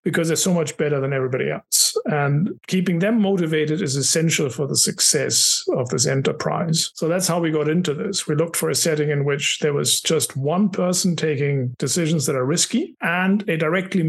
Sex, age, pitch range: male, 50-69, 145-180 Hz